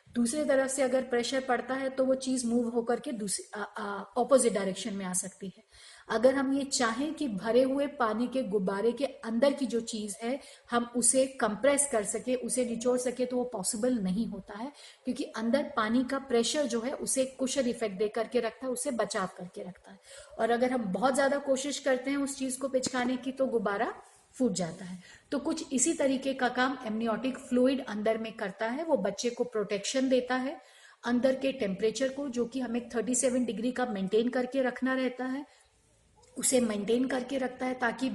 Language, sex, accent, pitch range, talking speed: Hindi, female, native, 225-265 Hz, 200 wpm